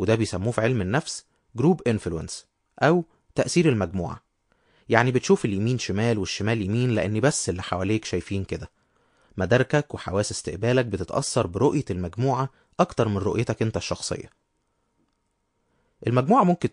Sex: male